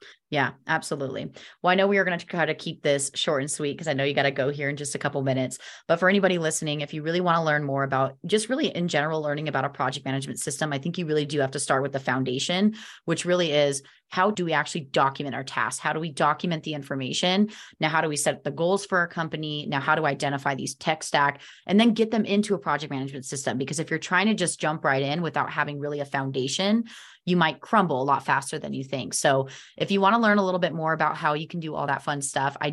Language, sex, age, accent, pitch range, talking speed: English, female, 20-39, American, 145-175 Hz, 270 wpm